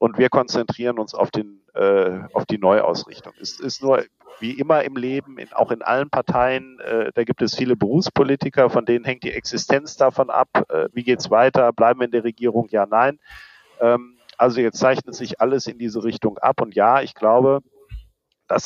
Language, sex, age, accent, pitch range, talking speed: German, male, 50-69, German, 115-135 Hz, 195 wpm